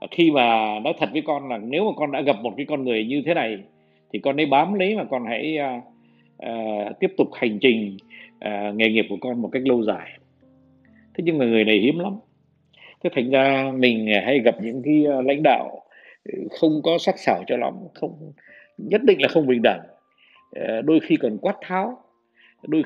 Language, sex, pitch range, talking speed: Vietnamese, male, 115-165 Hz, 210 wpm